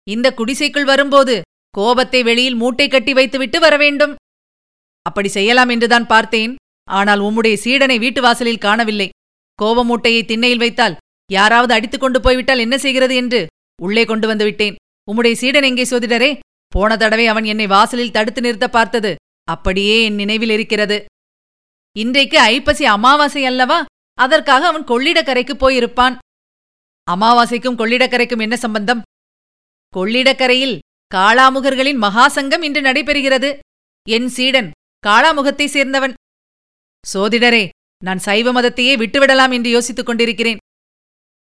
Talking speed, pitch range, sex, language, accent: 115 wpm, 220-265 Hz, female, Tamil, native